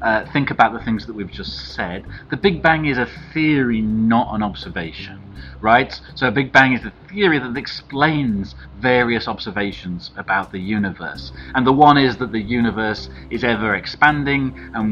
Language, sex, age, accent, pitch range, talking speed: English, male, 40-59, British, 100-130 Hz, 175 wpm